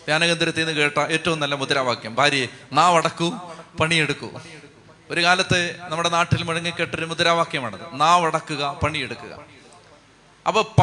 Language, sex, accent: Malayalam, male, native